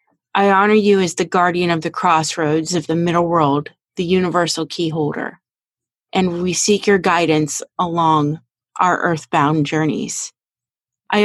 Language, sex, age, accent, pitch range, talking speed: English, female, 30-49, American, 160-195 Hz, 145 wpm